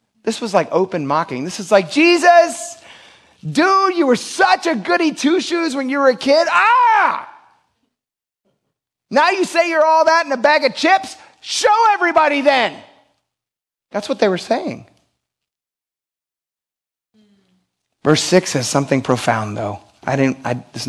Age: 30-49